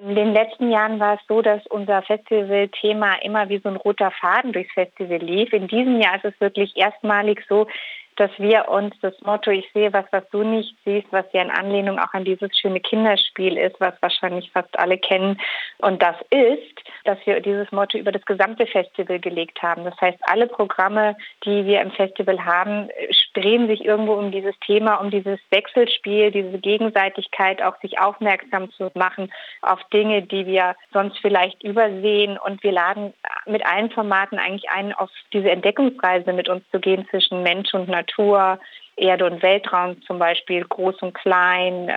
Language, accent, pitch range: German, German, 185-210 Hz